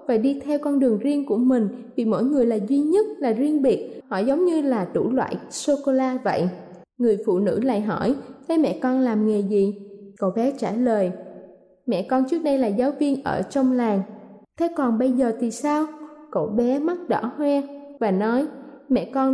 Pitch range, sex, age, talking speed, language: 220-280 Hz, female, 20-39, 200 wpm, Vietnamese